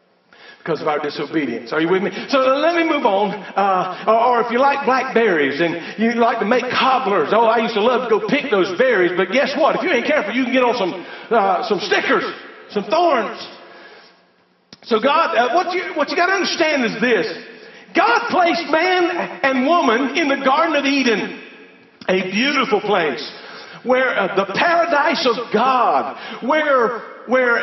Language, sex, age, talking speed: English, male, 50-69, 190 wpm